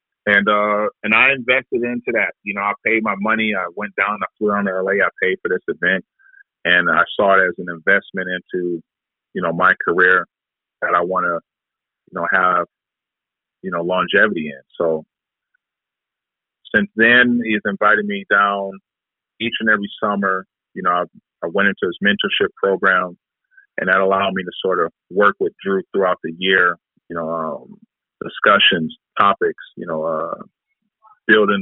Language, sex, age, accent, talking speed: English, male, 30-49, American, 170 wpm